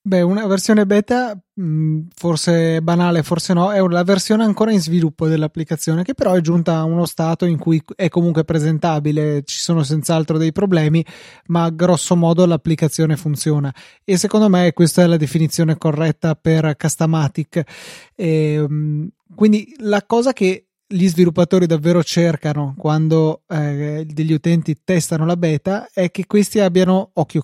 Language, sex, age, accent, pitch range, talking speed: Italian, male, 20-39, native, 160-185 Hz, 145 wpm